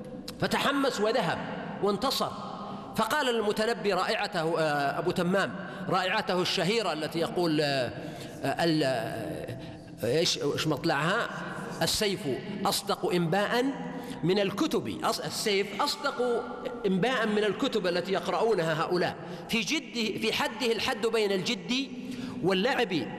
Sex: male